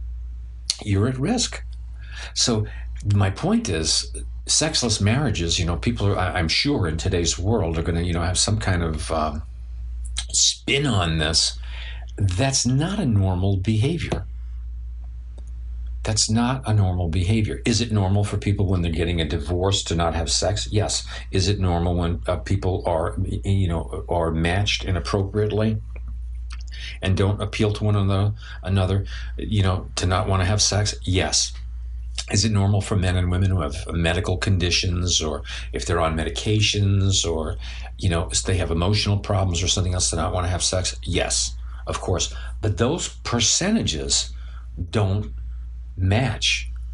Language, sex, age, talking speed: English, male, 50-69, 155 wpm